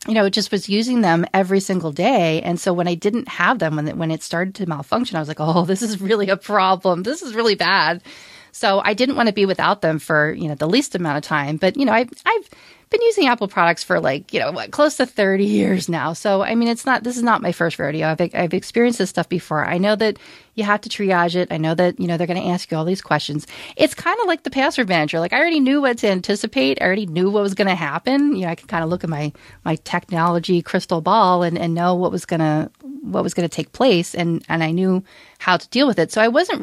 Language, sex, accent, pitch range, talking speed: English, female, American, 170-230 Hz, 275 wpm